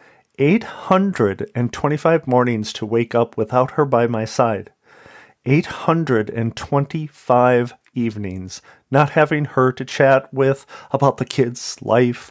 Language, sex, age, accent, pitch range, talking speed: English, male, 40-59, American, 120-165 Hz, 105 wpm